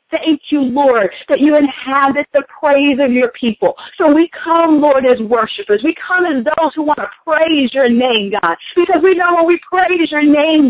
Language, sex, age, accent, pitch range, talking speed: English, female, 40-59, American, 255-335 Hz, 200 wpm